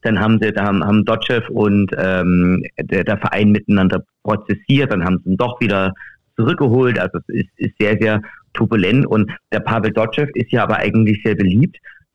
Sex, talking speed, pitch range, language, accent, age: male, 185 wpm, 105-125 Hz, German, German, 50-69